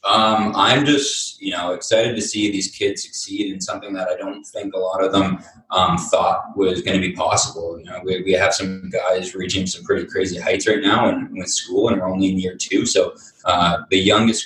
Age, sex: 20-39, male